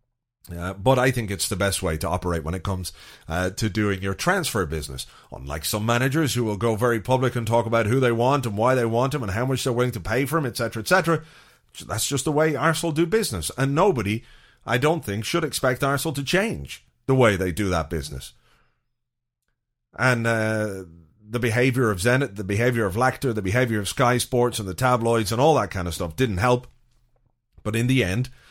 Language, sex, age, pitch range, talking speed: English, male, 30-49, 100-130 Hz, 215 wpm